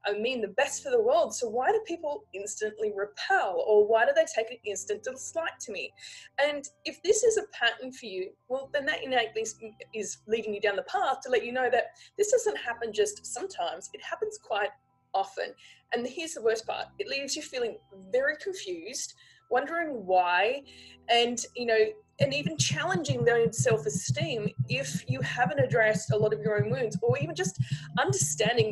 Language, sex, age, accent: English, female, 20-39, Australian